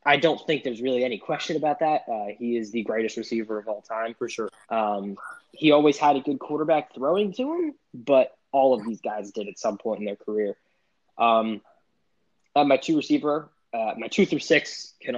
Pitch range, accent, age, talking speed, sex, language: 110-160 Hz, American, 20-39, 210 wpm, male, English